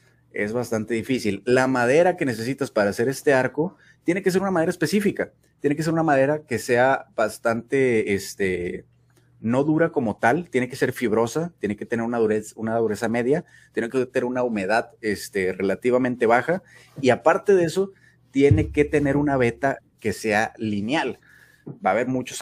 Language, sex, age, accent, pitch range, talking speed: Spanish, male, 30-49, Mexican, 110-145 Hz, 175 wpm